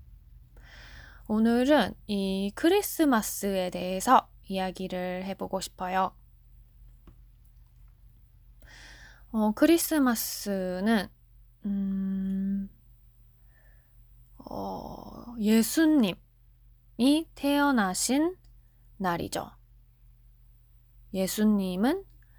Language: Korean